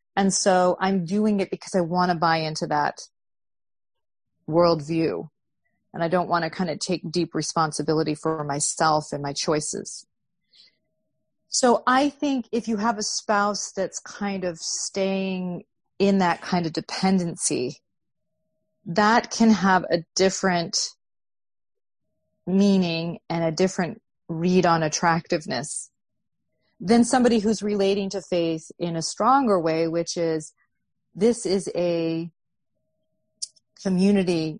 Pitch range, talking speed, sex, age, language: 160-200 Hz, 125 wpm, female, 30-49, English